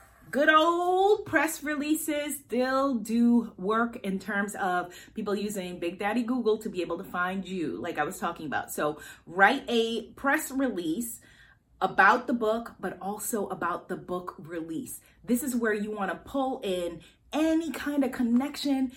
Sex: female